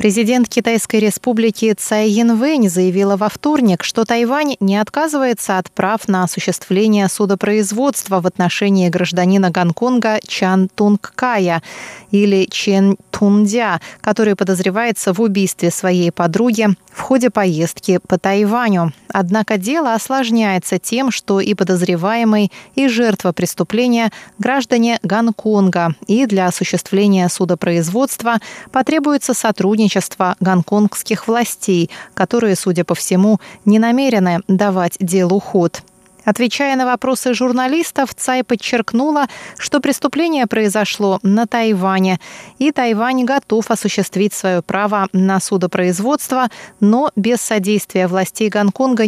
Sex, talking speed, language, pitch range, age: female, 110 wpm, Russian, 190-235 Hz, 20-39